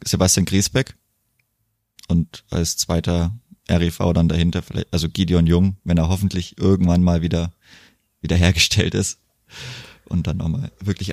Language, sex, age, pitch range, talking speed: German, male, 20-39, 85-105 Hz, 135 wpm